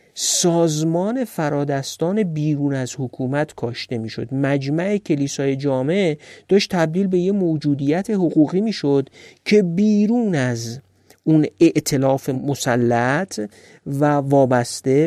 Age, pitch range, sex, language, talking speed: 50-69, 140-195 Hz, male, Persian, 105 wpm